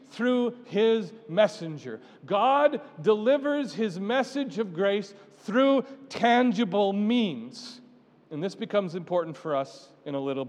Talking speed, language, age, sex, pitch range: 120 wpm, English, 40-59, male, 185-250 Hz